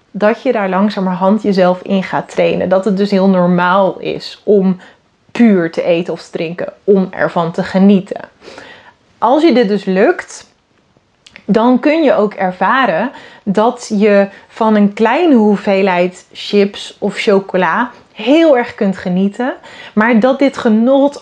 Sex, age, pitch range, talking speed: female, 30-49, 195-245 Hz, 145 wpm